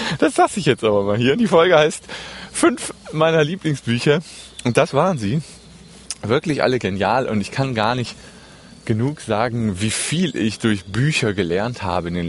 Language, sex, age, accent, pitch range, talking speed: German, male, 30-49, German, 100-130 Hz, 175 wpm